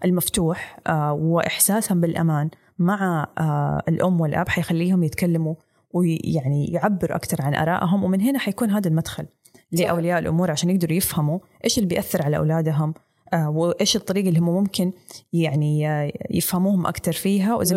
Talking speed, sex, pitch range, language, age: 130 wpm, female, 160-185 Hz, Arabic, 20-39